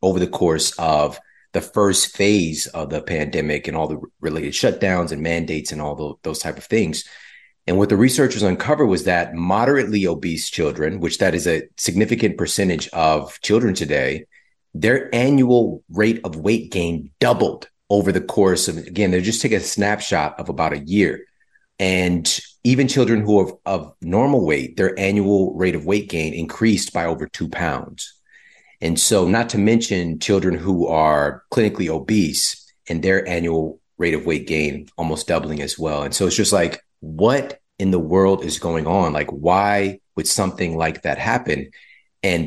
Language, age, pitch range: English, 40-59, 80-105 Hz